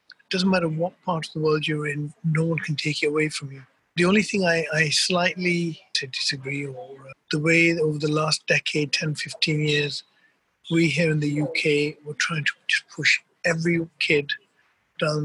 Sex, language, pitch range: male, English, 150-175 Hz